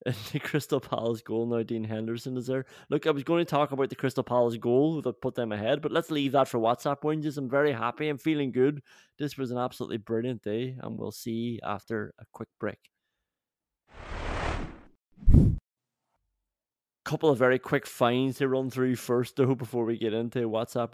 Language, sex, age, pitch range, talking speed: English, male, 20-39, 120-145 Hz, 185 wpm